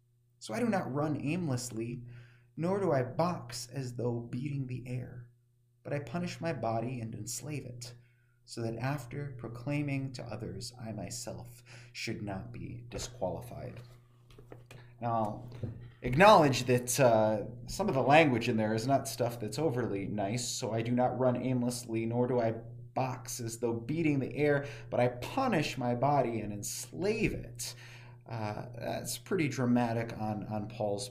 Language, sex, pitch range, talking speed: English, male, 120-135 Hz, 155 wpm